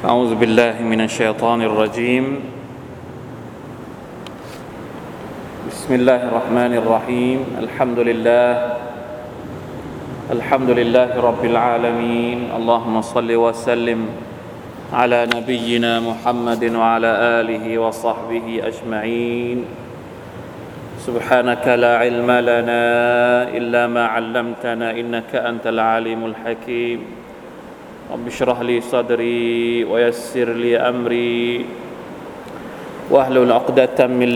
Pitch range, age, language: 115-120 Hz, 20-39, Thai